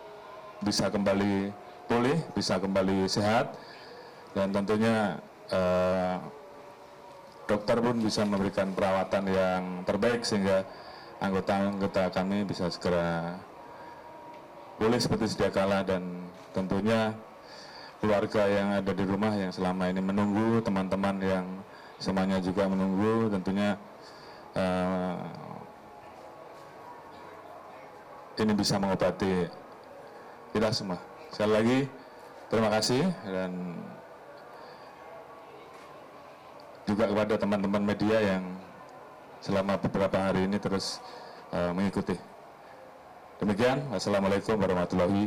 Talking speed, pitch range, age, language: 90 wpm, 95-110 Hz, 30-49, Indonesian